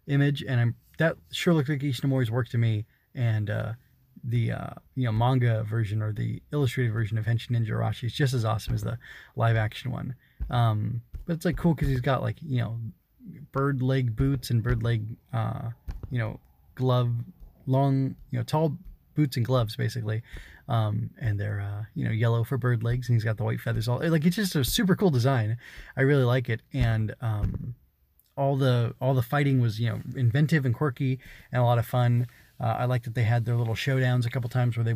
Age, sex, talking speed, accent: 20-39, male, 215 wpm, American